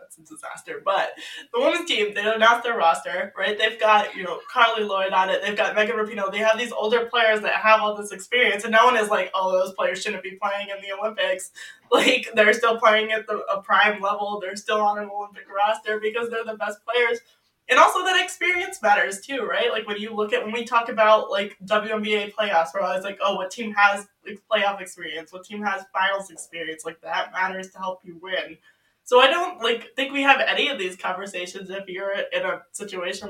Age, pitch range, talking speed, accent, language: 20-39, 185-220 Hz, 225 wpm, American, English